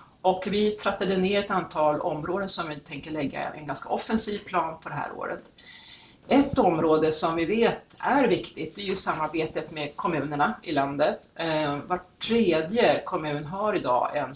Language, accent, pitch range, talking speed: Swedish, native, 145-200 Hz, 165 wpm